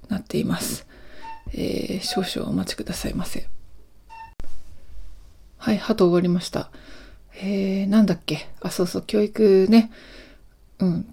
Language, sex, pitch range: Japanese, female, 175-225 Hz